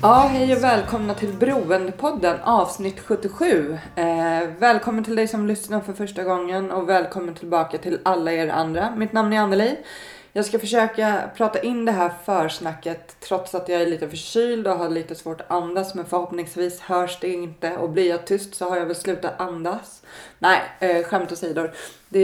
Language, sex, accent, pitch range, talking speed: Swedish, female, native, 165-200 Hz, 180 wpm